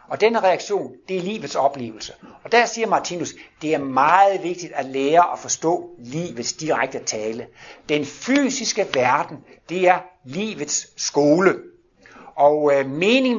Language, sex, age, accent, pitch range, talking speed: Danish, male, 60-79, native, 145-215 Hz, 145 wpm